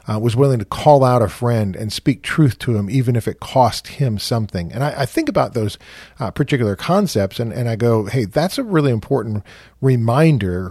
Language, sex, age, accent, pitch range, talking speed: English, male, 40-59, American, 105-140 Hz, 215 wpm